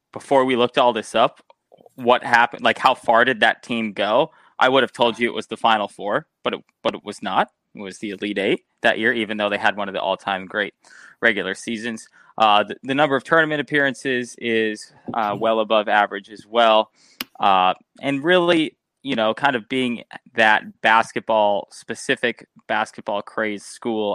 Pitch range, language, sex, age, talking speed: 105-130 Hz, English, male, 20-39, 190 wpm